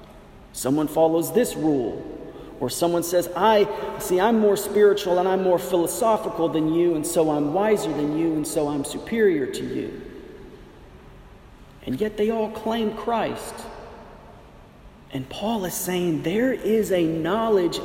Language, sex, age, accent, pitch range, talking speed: English, male, 40-59, American, 160-220 Hz, 150 wpm